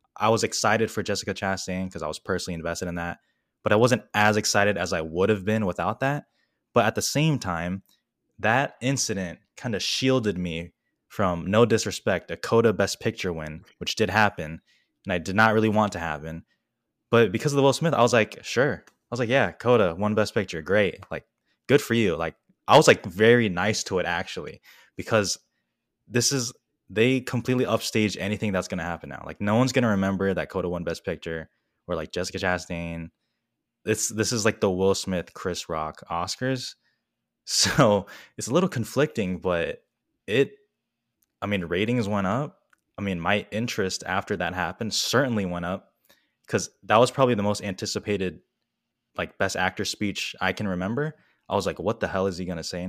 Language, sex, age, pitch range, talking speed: English, male, 10-29, 90-115 Hz, 195 wpm